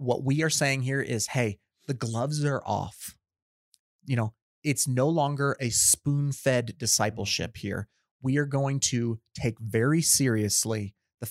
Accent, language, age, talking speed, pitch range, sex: American, English, 30-49, 150 wpm, 110-145 Hz, male